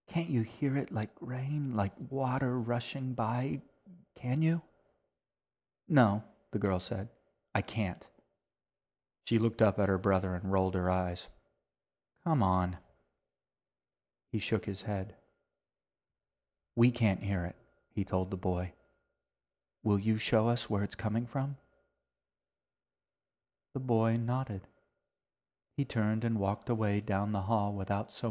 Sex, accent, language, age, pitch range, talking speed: male, American, English, 40-59, 95-120 Hz, 135 wpm